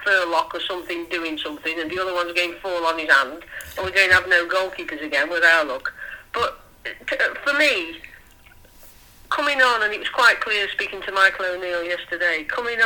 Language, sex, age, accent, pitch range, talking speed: English, female, 40-59, British, 175-220 Hz, 195 wpm